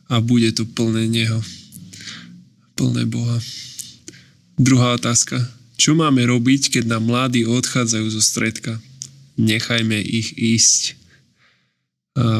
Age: 10-29